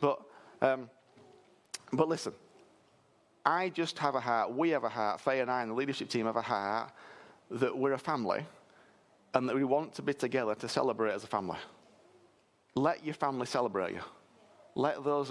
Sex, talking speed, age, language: male, 180 wpm, 30-49, English